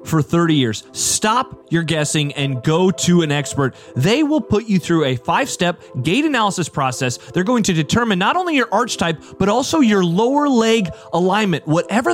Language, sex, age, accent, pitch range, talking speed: English, male, 30-49, American, 140-215 Hz, 185 wpm